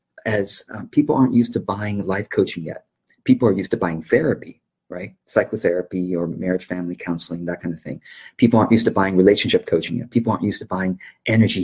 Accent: American